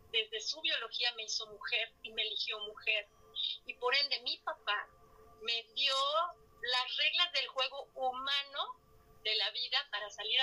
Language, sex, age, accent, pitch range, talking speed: Spanish, female, 30-49, Mexican, 240-325 Hz, 155 wpm